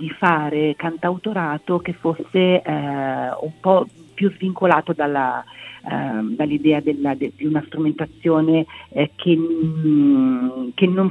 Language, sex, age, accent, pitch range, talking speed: Italian, female, 40-59, native, 140-170 Hz, 105 wpm